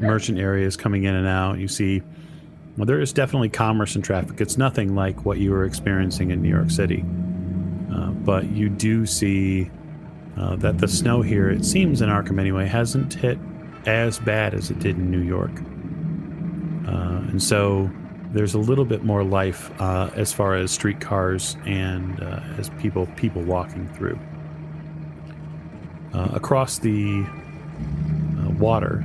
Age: 40-59